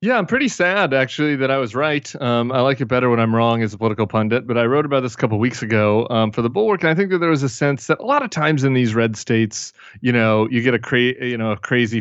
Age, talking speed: 30-49, 310 wpm